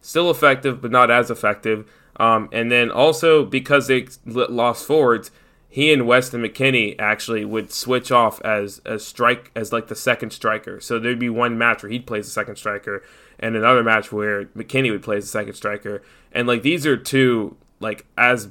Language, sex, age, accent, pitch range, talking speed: English, male, 10-29, American, 110-125 Hz, 195 wpm